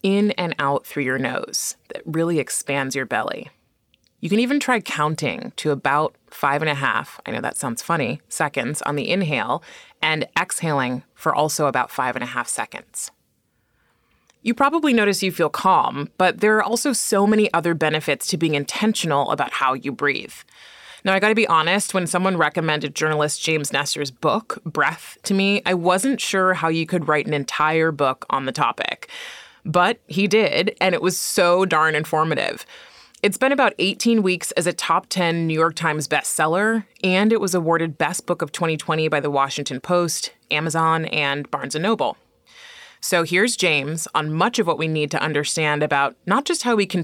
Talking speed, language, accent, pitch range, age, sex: 185 wpm, English, American, 150-195 Hz, 20-39, female